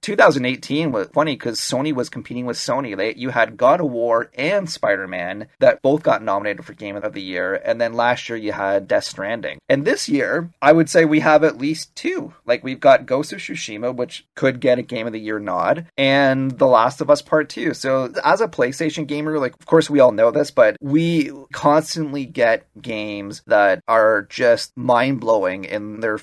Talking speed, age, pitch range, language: 205 wpm, 30-49, 115-150 Hz, English